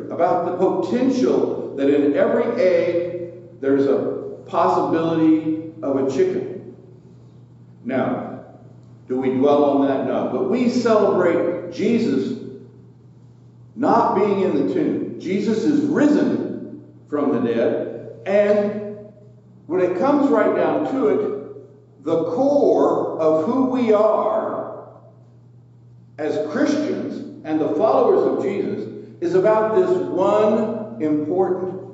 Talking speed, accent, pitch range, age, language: 115 wpm, American, 130-210 Hz, 60-79, English